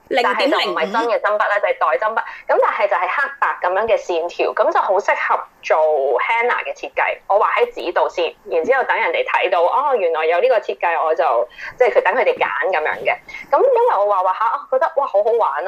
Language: Chinese